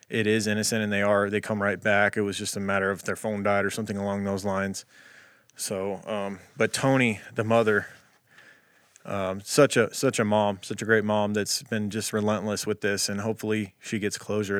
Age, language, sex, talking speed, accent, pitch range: 20-39, English, male, 210 wpm, American, 105-120 Hz